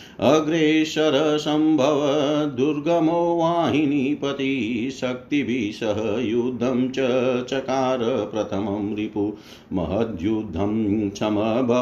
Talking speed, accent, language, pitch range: 55 wpm, native, Hindi, 110-135 Hz